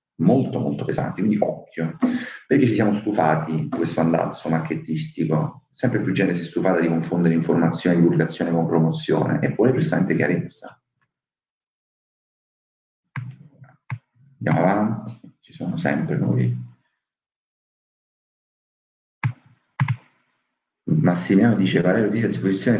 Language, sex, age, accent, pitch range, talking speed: Italian, male, 50-69, native, 80-105 Hz, 110 wpm